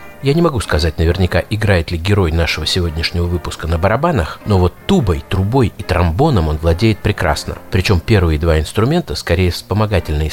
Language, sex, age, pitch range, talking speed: Russian, male, 50-69, 85-105 Hz, 165 wpm